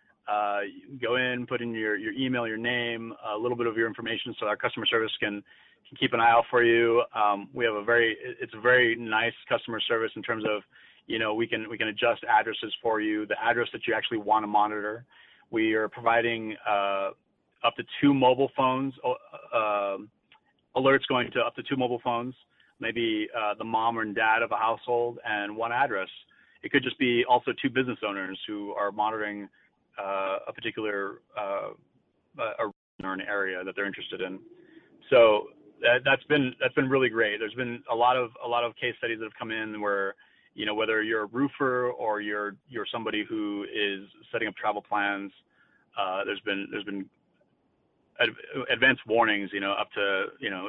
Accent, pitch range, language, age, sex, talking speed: American, 105-125 Hz, English, 30-49, male, 195 wpm